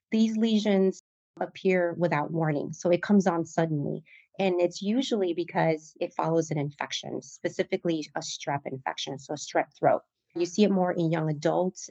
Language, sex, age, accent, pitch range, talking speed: English, female, 30-49, American, 160-205 Hz, 165 wpm